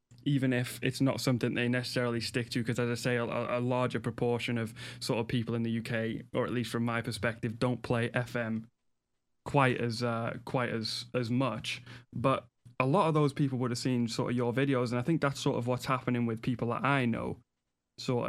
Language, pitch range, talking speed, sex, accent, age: English, 115-125 Hz, 220 wpm, male, British, 10-29